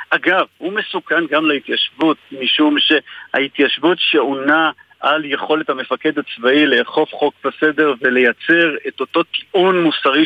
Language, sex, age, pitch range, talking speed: Hebrew, male, 50-69, 145-200 Hz, 115 wpm